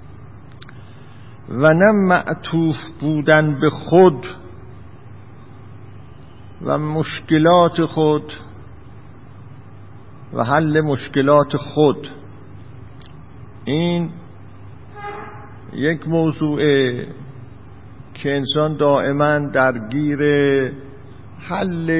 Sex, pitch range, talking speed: male, 115-155 Hz, 55 wpm